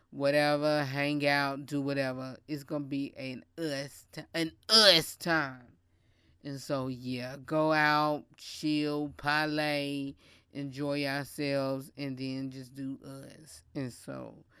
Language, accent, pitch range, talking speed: English, American, 135-155 Hz, 125 wpm